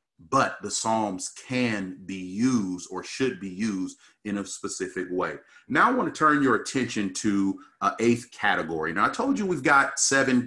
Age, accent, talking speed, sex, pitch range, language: 40-59, American, 180 wpm, male, 100-125 Hz, English